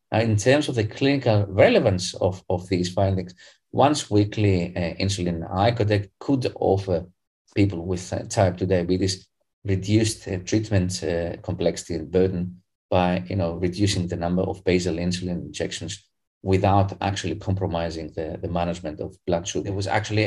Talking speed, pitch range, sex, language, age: 155 wpm, 90-105 Hz, male, English, 30-49